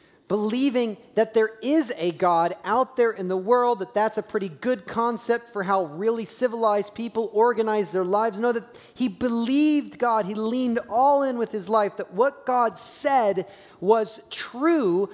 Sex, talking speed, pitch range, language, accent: male, 170 wpm, 155-230 Hz, English, American